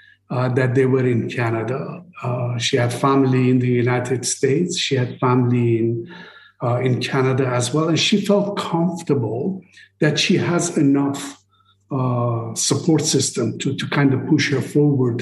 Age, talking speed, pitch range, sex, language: 50-69, 160 wpm, 130-155 Hz, male, English